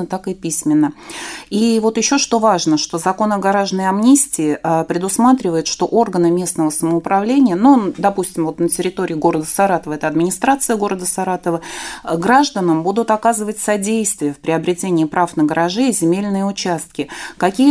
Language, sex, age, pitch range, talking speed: Russian, female, 30-49, 170-205 Hz, 140 wpm